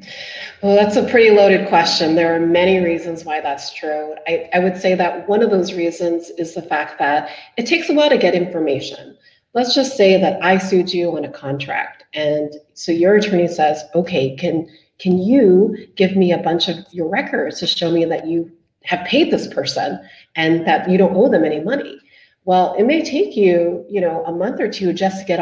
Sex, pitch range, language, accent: female, 170-205 Hz, English, American